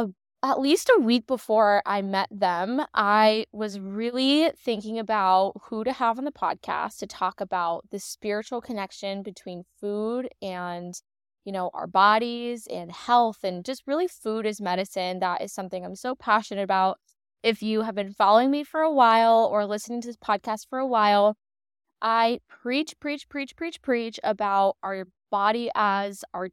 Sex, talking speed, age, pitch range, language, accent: female, 170 wpm, 10-29, 195-240 Hz, English, American